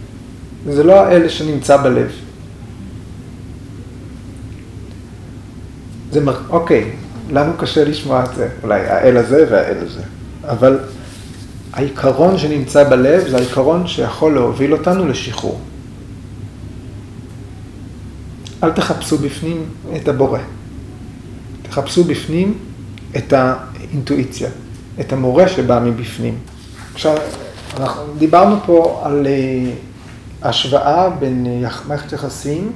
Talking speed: 95 wpm